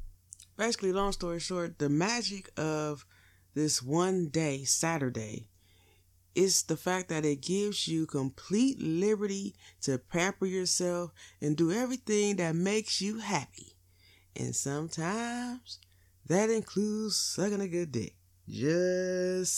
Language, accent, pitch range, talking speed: English, American, 115-175 Hz, 120 wpm